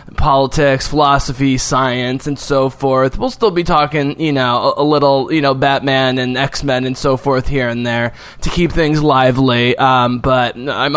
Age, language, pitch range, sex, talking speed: 20-39, English, 125-160 Hz, male, 185 wpm